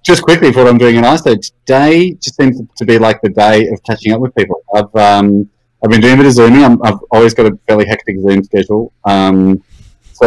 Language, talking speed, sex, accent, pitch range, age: English, 240 wpm, male, Australian, 95-120 Hz, 30-49